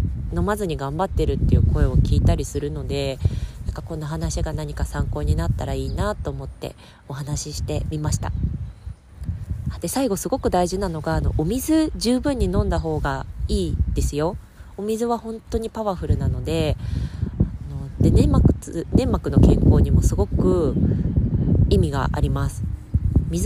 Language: Japanese